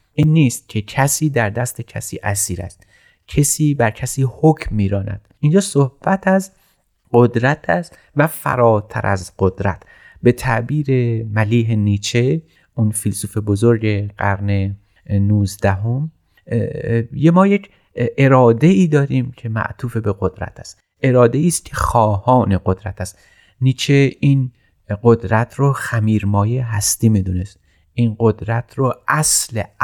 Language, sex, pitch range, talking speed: Persian, male, 105-135 Hz, 120 wpm